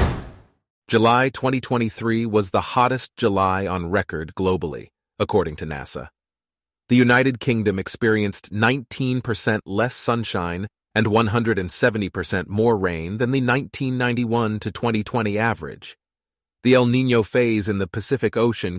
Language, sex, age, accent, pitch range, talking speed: English, male, 30-49, American, 95-120 Hz, 120 wpm